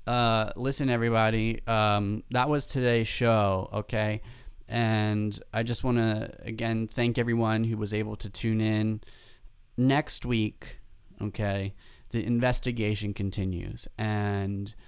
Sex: male